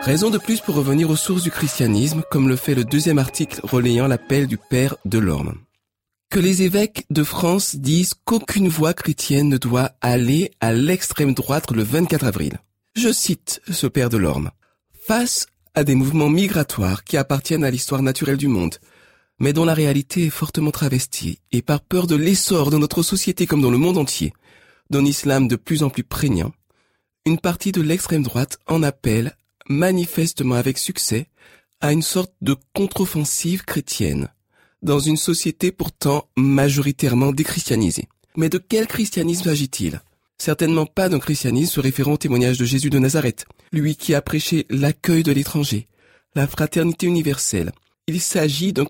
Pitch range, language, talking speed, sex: 130-170 Hz, French, 165 wpm, male